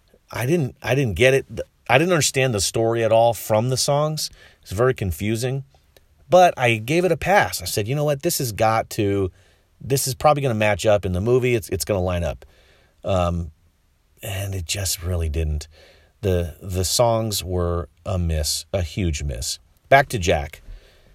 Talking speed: 190 wpm